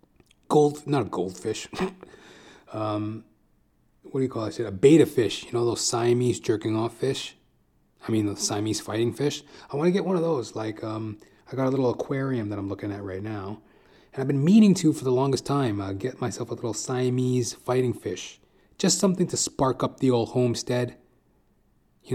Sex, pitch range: male, 105-135 Hz